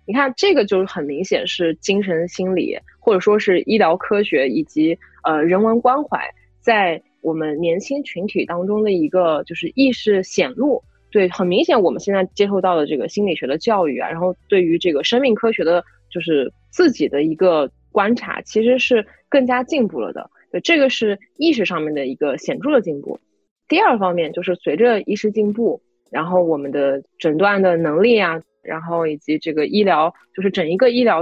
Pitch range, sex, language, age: 170-225 Hz, female, Chinese, 20-39